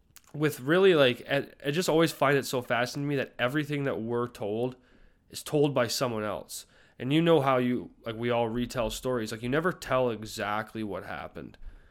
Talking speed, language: 195 wpm, English